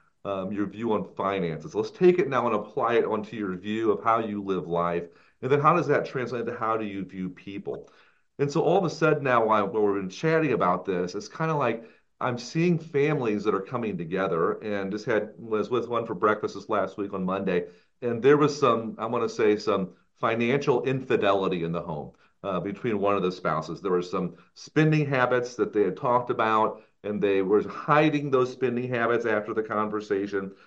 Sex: male